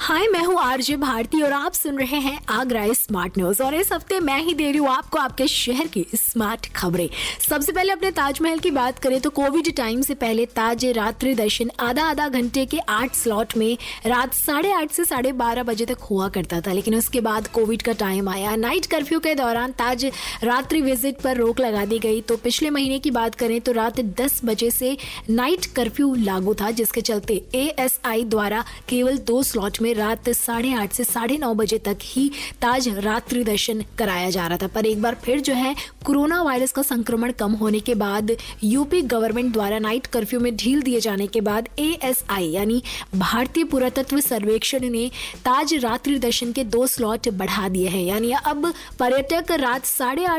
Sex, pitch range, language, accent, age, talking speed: female, 225-275 Hz, Hindi, native, 20-39, 195 wpm